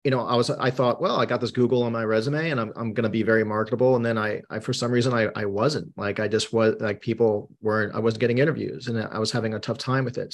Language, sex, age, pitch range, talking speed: English, male, 30-49, 110-130 Hz, 300 wpm